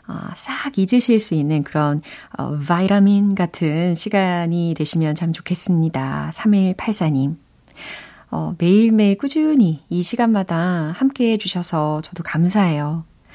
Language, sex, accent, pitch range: Korean, female, native, 160-225 Hz